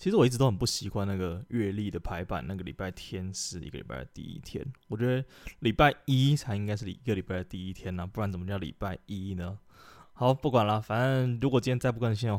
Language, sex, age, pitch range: Chinese, male, 20-39, 95-120 Hz